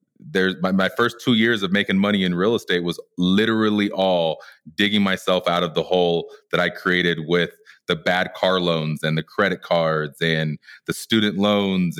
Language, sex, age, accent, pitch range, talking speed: English, male, 30-49, American, 95-120 Hz, 180 wpm